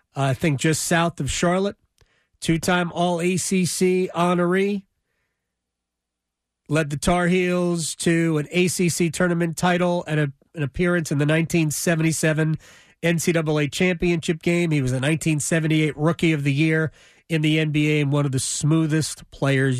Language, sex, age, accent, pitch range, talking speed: English, male, 40-59, American, 145-180 Hz, 135 wpm